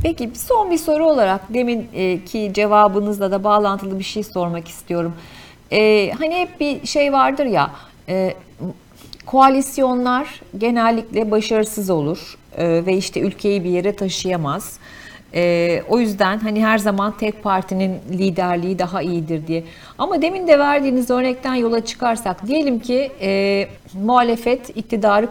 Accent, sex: native, female